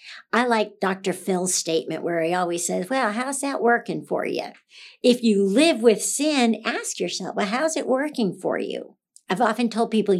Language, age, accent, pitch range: English, 60-79, American, 190-225 Hz